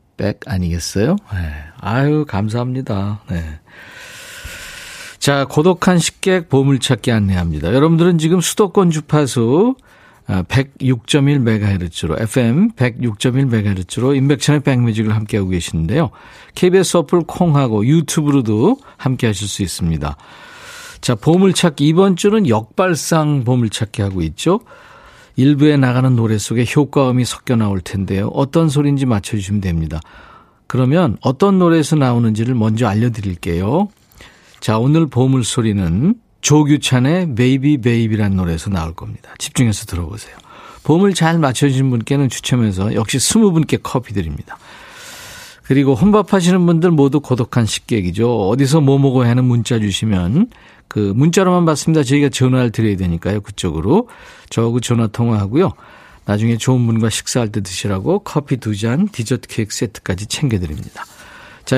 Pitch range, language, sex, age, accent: 105-155 Hz, Korean, male, 50-69, native